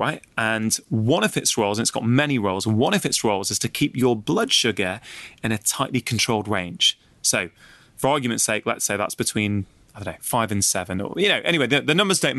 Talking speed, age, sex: 230 wpm, 20-39, male